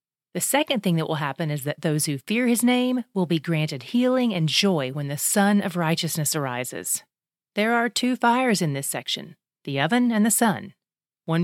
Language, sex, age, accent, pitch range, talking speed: English, female, 30-49, American, 165-220 Hz, 200 wpm